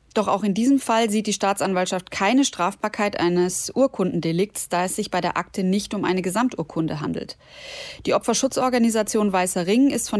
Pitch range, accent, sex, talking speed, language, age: 175-225 Hz, German, female, 170 wpm, German, 30-49